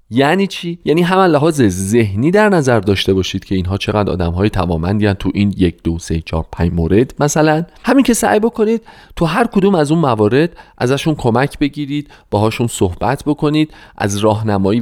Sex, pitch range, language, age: male, 95-150 Hz, Persian, 40-59